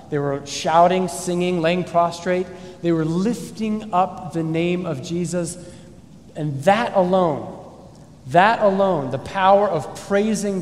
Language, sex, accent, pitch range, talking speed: English, male, American, 145-190 Hz, 130 wpm